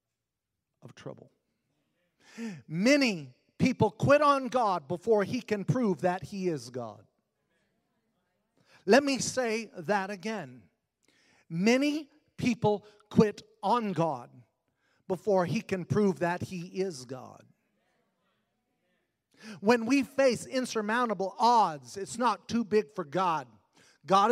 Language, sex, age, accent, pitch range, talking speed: English, male, 40-59, American, 165-225 Hz, 110 wpm